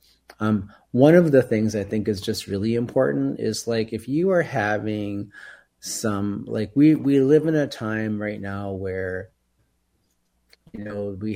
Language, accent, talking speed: English, American, 165 wpm